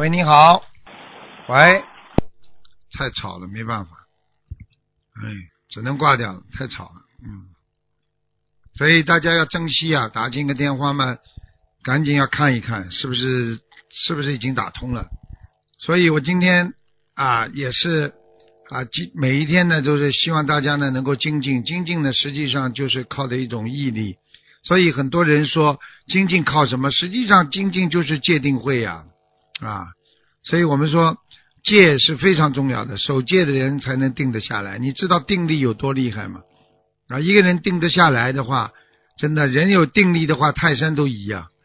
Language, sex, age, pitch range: Chinese, male, 50-69, 120-165 Hz